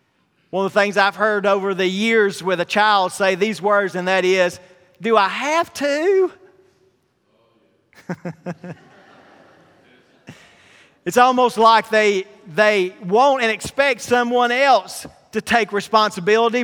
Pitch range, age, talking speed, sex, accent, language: 185-240 Hz, 40-59, 125 wpm, male, American, English